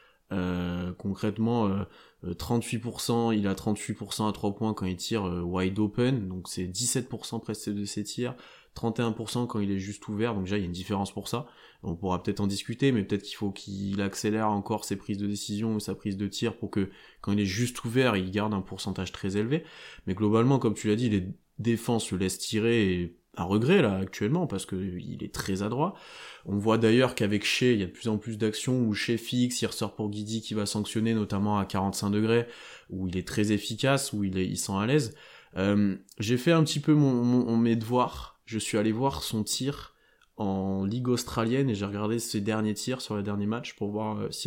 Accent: French